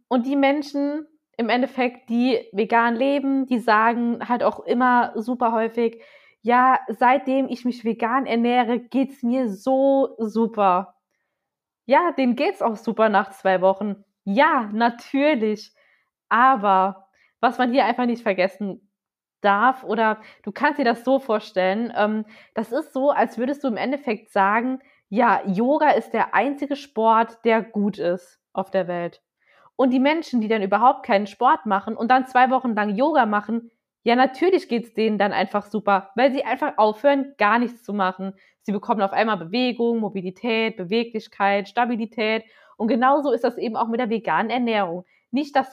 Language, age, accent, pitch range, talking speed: German, 20-39, German, 215-260 Hz, 160 wpm